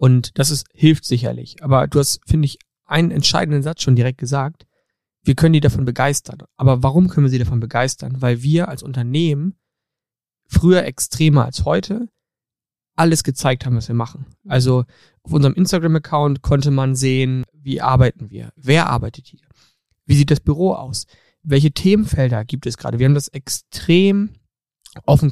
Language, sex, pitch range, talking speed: German, male, 130-160 Hz, 165 wpm